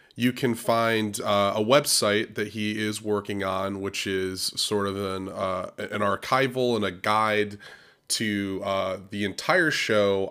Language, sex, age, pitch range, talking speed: English, male, 30-49, 95-120 Hz, 155 wpm